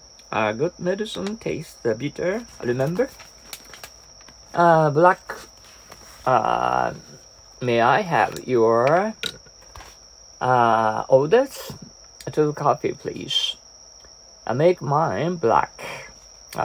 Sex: male